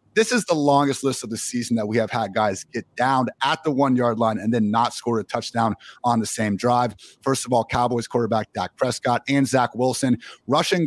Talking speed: 220 wpm